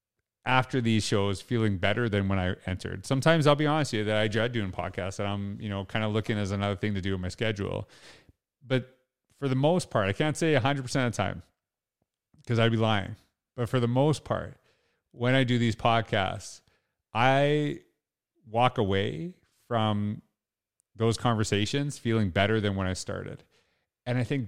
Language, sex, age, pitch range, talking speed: English, male, 30-49, 105-130 Hz, 185 wpm